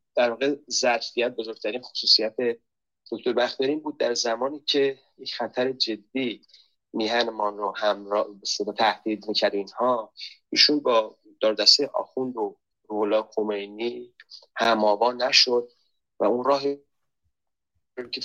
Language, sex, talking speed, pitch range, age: Persian, male, 110 wpm, 105-135 Hz, 30-49